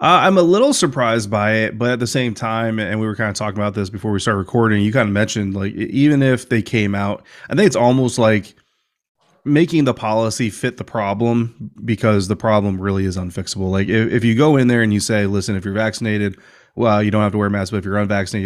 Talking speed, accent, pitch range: 250 wpm, American, 100-115 Hz